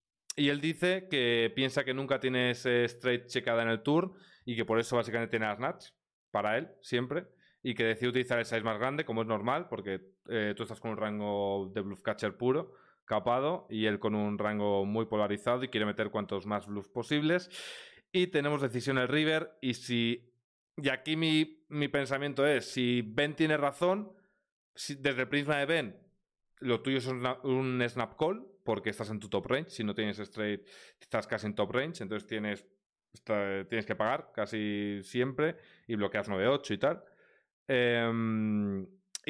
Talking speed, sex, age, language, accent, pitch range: 185 wpm, male, 30-49, Spanish, Spanish, 110-135 Hz